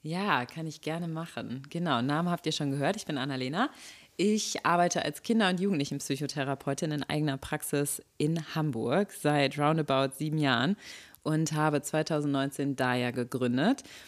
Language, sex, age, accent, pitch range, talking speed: German, female, 30-49, German, 140-165 Hz, 145 wpm